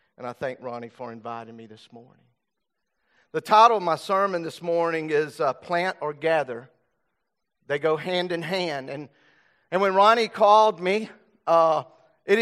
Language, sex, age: English, male, 40-59